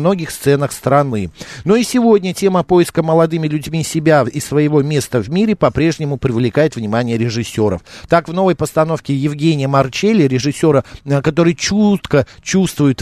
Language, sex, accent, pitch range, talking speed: Russian, male, native, 140-170 Hz, 140 wpm